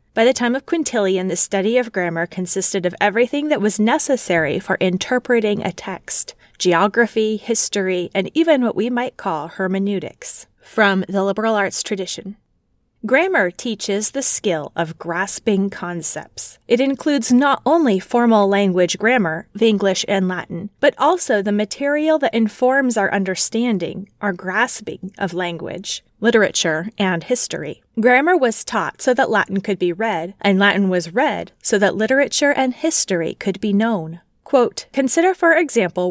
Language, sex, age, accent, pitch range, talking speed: English, female, 30-49, American, 190-255 Hz, 150 wpm